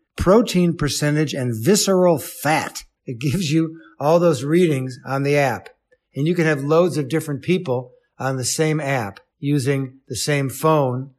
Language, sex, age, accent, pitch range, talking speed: English, male, 60-79, American, 125-150 Hz, 160 wpm